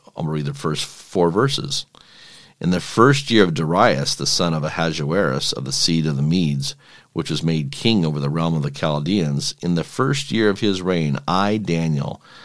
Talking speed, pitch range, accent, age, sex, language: 200 wpm, 75-105 Hz, American, 50-69, male, English